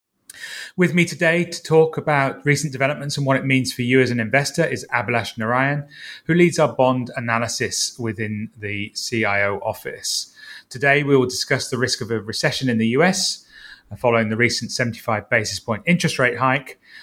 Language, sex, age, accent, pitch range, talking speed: English, male, 30-49, British, 115-145 Hz, 175 wpm